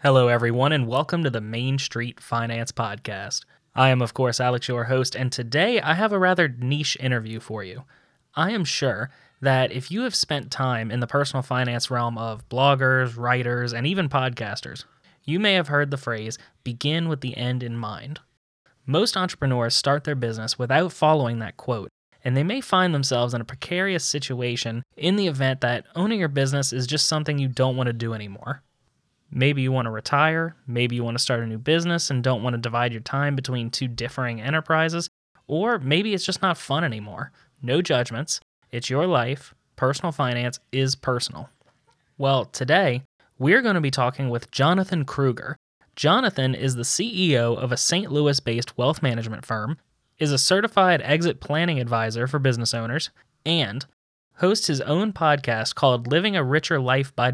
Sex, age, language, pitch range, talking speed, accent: male, 10-29, English, 120-155 Hz, 180 wpm, American